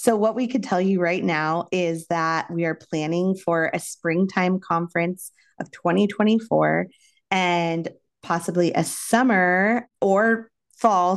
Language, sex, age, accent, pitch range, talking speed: English, female, 20-39, American, 170-190 Hz, 135 wpm